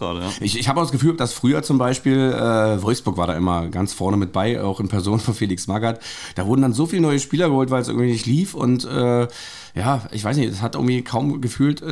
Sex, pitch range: male, 115-140 Hz